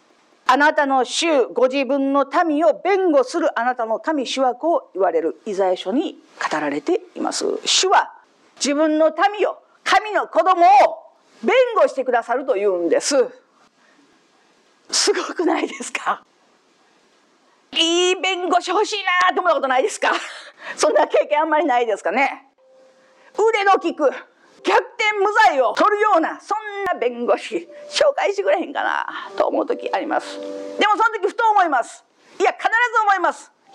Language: Japanese